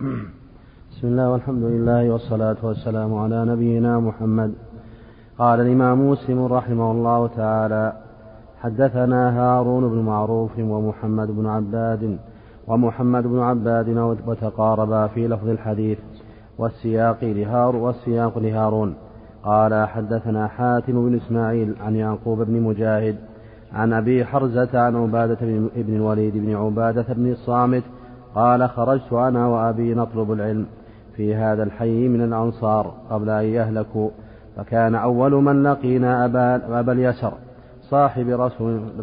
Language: Arabic